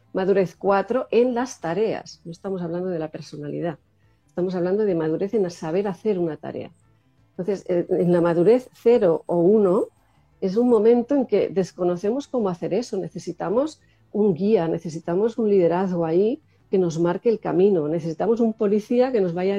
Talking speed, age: 165 wpm, 40-59